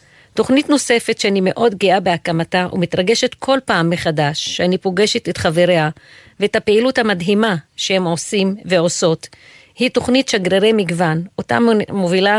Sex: female